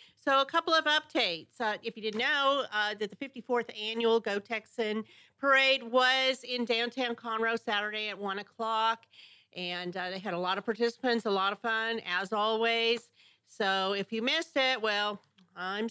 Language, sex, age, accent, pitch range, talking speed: English, female, 40-59, American, 210-260 Hz, 175 wpm